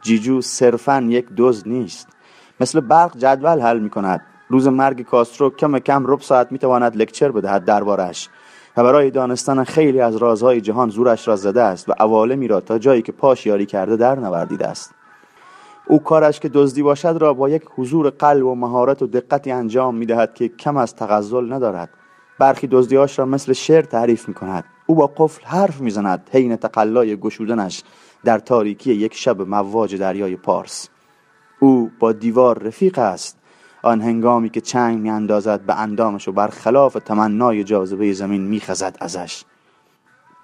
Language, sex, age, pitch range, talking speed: Persian, male, 30-49, 110-145 Hz, 155 wpm